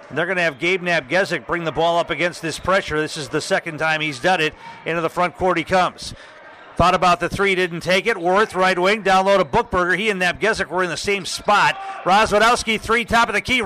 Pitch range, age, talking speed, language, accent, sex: 170-205 Hz, 40-59, 240 wpm, English, American, male